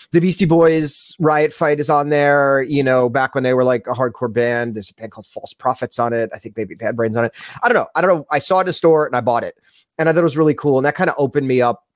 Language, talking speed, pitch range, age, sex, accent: English, 315 wpm, 120-165 Hz, 30-49, male, American